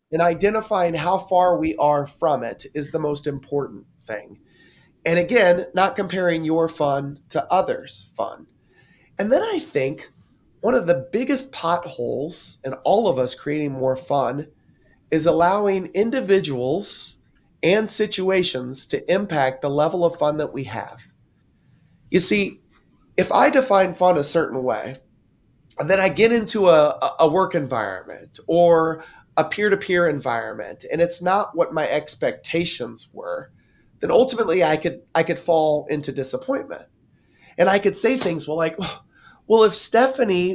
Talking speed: 150 wpm